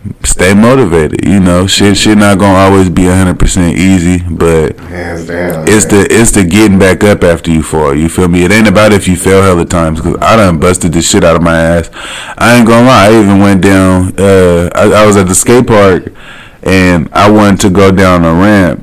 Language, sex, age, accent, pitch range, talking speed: English, male, 20-39, American, 85-105 Hz, 225 wpm